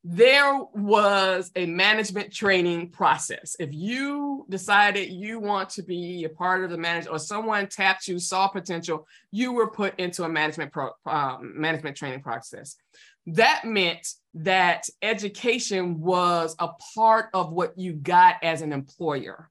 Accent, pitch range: American, 175-225 Hz